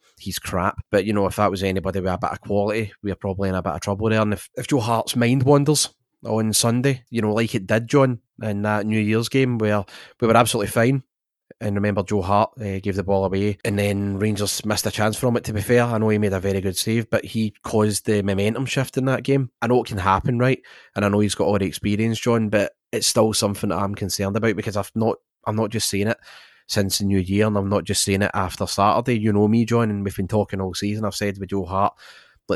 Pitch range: 100-110 Hz